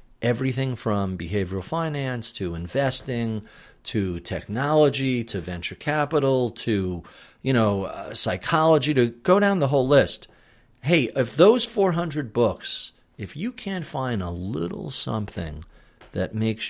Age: 50-69